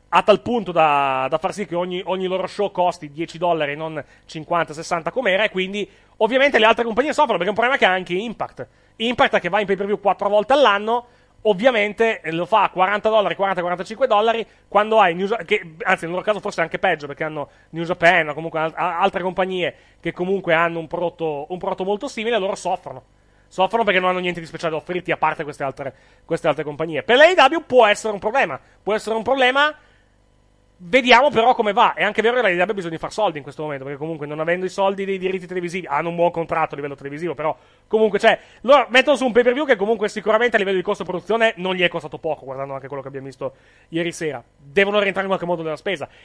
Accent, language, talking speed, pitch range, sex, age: native, Italian, 235 wpm, 165-220 Hz, male, 30-49